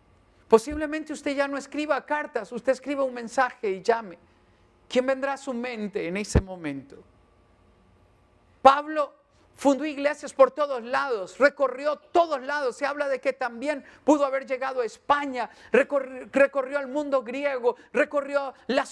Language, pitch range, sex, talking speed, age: English, 185-295 Hz, male, 145 wpm, 50-69